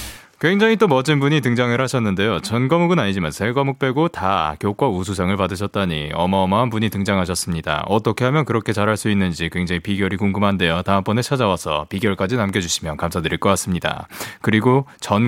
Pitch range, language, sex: 95-135 Hz, Korean, male